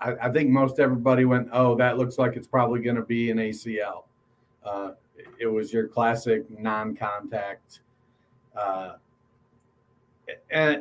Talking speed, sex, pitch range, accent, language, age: 135 wpm, male, 120-150 Hz, American, English, 40-59